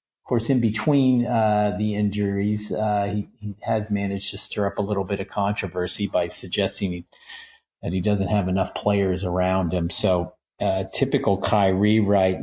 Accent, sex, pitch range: American, male, 100-120 Hz